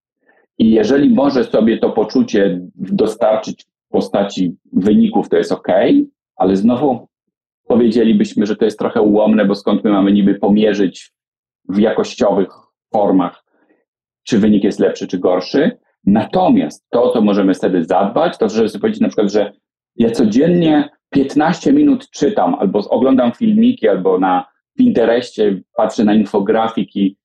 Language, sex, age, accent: Polish, male, 40-59, native